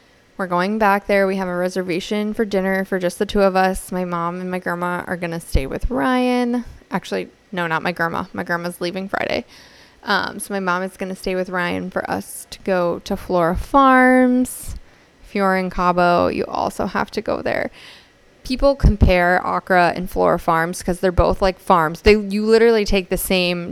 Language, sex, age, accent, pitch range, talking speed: English, female, 20-39, American, 180-220 Hz, 200 wpm